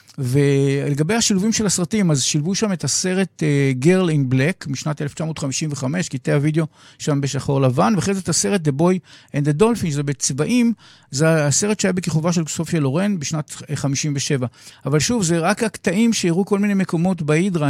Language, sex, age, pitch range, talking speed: Hebrew, male, 50-69, 140-185 Hz, 165 wpm